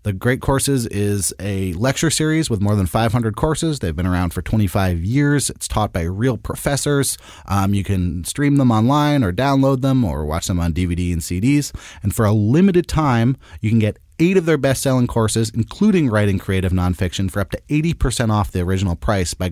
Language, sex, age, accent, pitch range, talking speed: English, male, 30-49, American, 95-130 Hz, 200 wpm